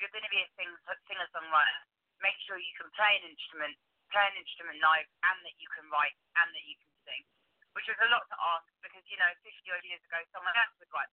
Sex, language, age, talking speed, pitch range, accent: female, English, 30-49, 250 wpm, 155-195 Hz, British